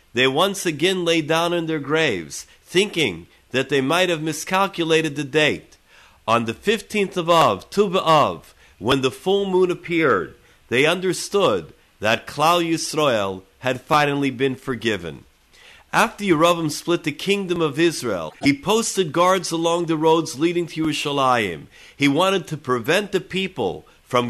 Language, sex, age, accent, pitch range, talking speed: English, male, 50-69, American, 135-175 Hz, 150 wpm